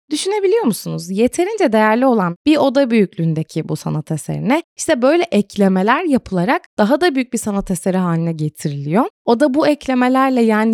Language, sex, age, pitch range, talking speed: Turkish, female, 20-39, 185-265 Hz, 150 wpm